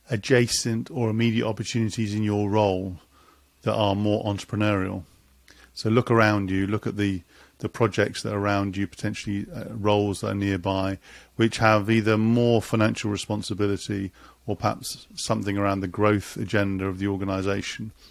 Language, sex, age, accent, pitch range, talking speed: English, male, 40-59, British, 95-115 Hz, 150 wpm